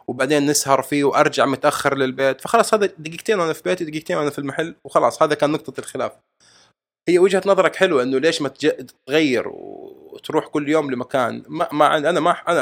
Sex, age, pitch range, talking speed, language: male, 20-39, 135-185 Hz, 180 wpm, Arabic